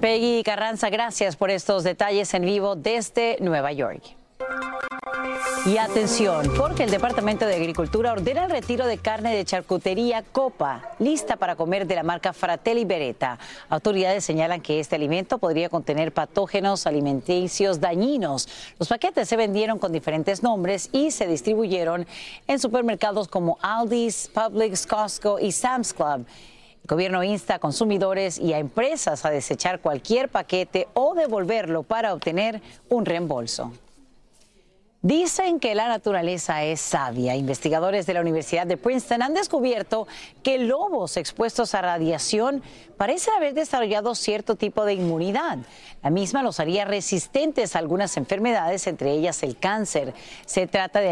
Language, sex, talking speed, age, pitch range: Spanish, female, 145 wpm, 40-59, 170-230 Hz